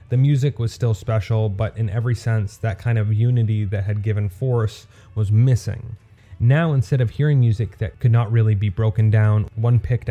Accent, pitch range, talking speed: American, 105-120 Hz, 195 wpm